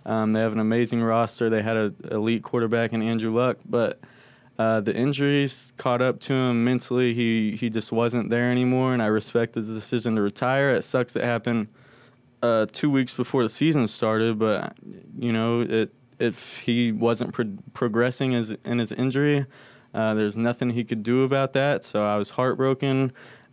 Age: 20-39